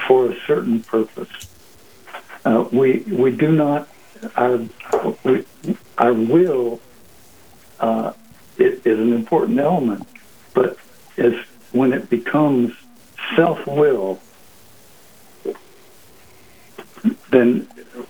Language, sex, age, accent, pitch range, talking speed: English, male, 60-79, American, 115-190 Hz, 90 wpm